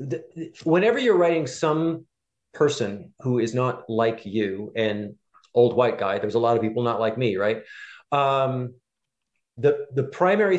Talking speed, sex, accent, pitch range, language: 155 wpm, male, American, 105-135 Hz, English